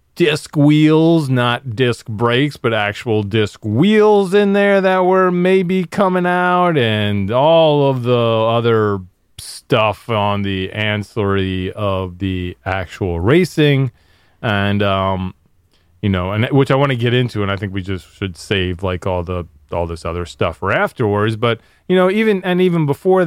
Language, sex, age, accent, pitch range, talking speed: English, male, 30-49, American, 95-140 Hz, 160 wpm